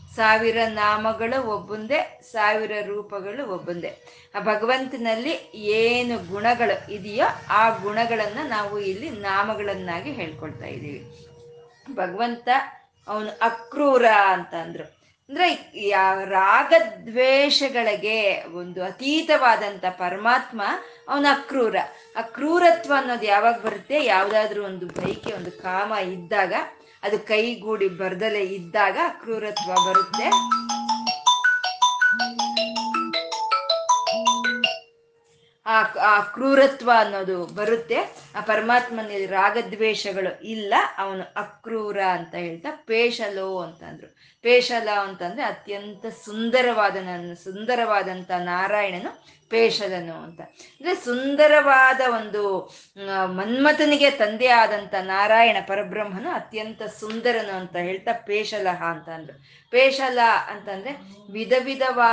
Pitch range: 195-245 Hz